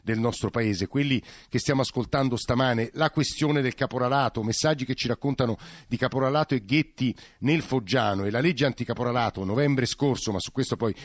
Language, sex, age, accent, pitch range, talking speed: Italian, male, 50-69, native, 115-145 Hz, 175 wpm